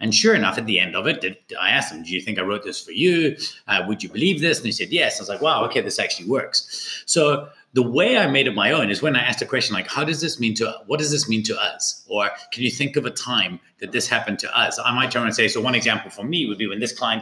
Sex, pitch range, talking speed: male, 110-170 Hz, 315 wpm